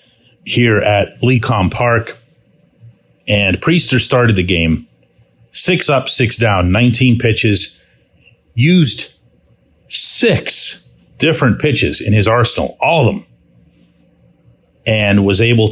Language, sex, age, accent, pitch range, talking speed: English, male, 40-59, American, 100-125 Hz, 105 wpm